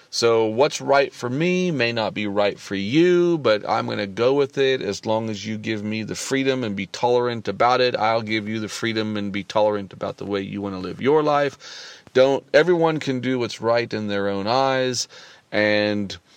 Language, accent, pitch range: English, American, 105-135 Hz